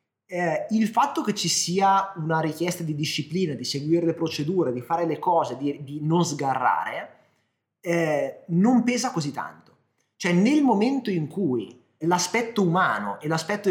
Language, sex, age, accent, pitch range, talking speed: Italian, male, 30-49, native, 150-195 Hz, 160 wpm